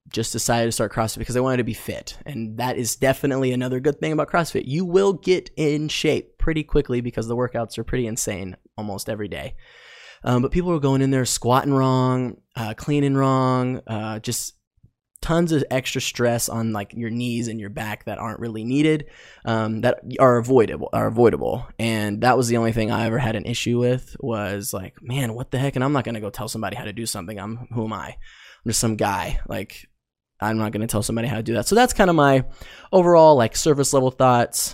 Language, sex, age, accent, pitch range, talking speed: English, male, 20-39, American, 115-130 Hz, 225 wpm